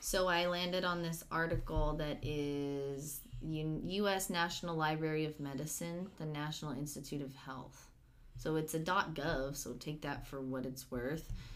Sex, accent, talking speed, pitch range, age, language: female, American, 160 wpm, 140-170 Hz, 20-39, English